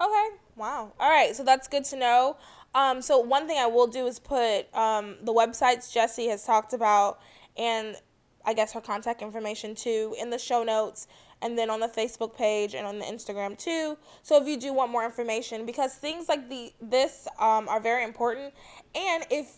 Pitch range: 220-265 Hz